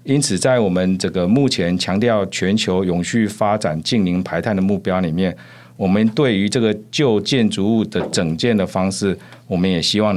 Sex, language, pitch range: male, Chinese, 90-115 Hz